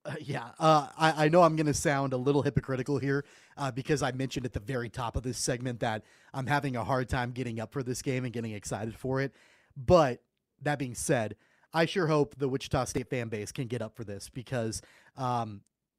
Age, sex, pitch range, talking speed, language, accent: 30-49, male, 125-155 Hz, 225 wpm, English, American